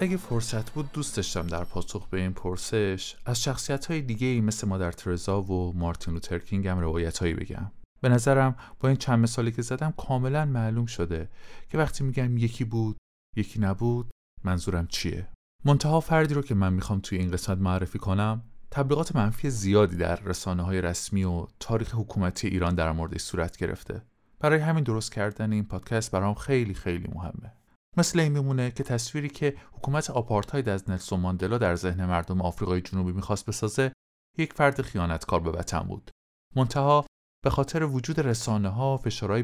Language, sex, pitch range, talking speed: Persian, male, 95-135 Hz, 165 wpm